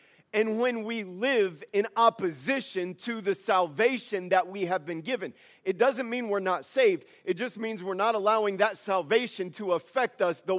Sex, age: male, 40-59